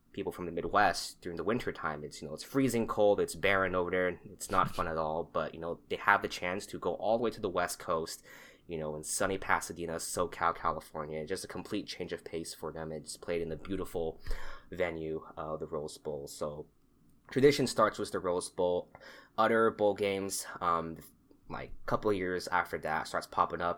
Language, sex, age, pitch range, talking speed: English, male, 20-39, 80-100 Hz, 215 wpm